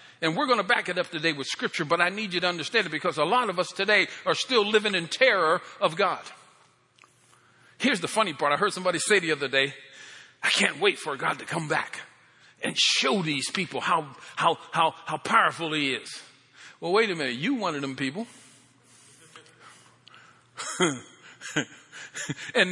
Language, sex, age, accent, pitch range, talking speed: English, male, 50-69, American, 145-205 Hz, 185 wpm